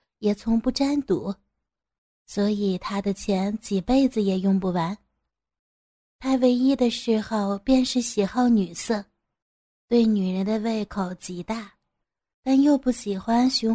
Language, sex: Chinese, female